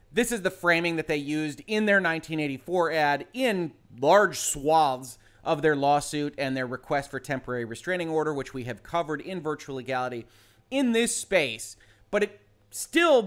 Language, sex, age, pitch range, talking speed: English, male, 30-49, 135-180 Hz, 165 wpm